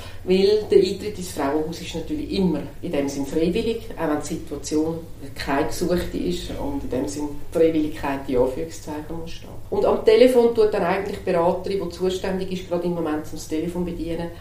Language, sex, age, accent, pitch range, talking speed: German, female, 40-59, Austrian, 150-195 Hz, 185 wpm